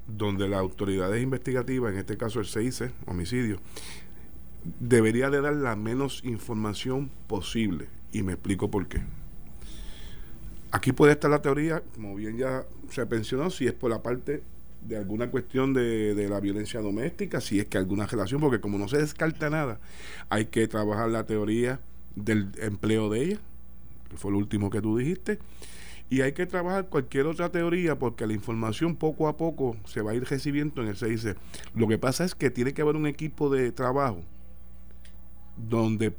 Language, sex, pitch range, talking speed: Spanish, male, 100-140 Hz, 175 wpm